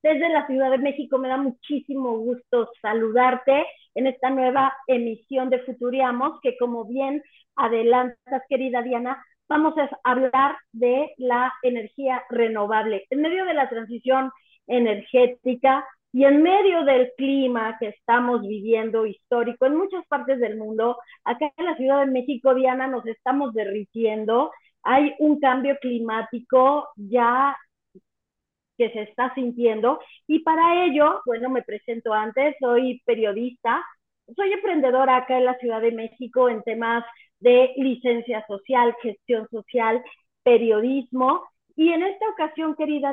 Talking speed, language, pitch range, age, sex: 135 wpm, Spanish, 235-280 Hz, 40-59, female